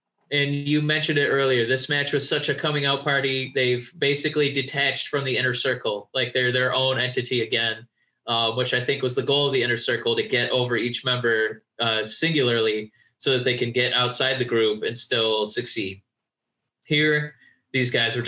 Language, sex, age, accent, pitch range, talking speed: English, male, 20-39, American, 125-150 Hz, 195 wpm